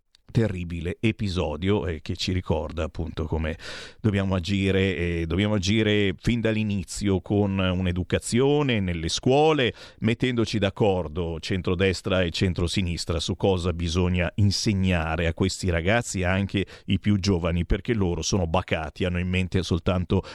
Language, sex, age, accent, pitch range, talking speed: Italian, male, 40-59, native, 95-130 Hz, 125 wpm